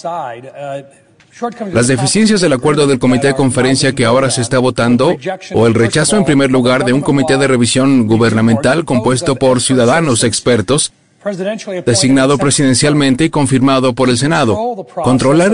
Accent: Mexican